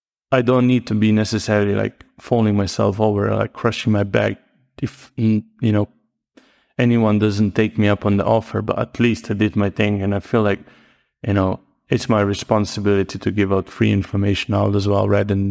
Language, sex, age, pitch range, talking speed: English, male, 30-49, 100-115 Hz, 195 wpm